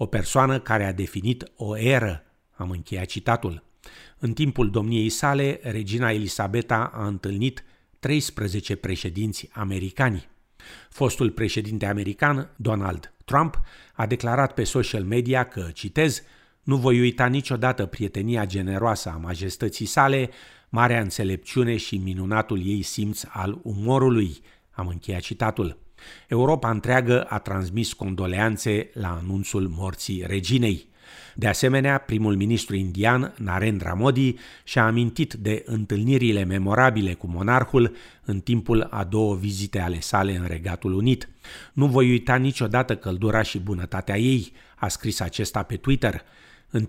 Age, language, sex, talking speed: 50-69, Romanian, male, 130 wpm